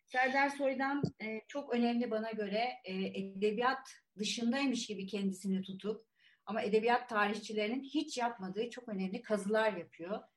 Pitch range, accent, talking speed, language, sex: 190-240 Hz, native, 125 wpm, Turkish, female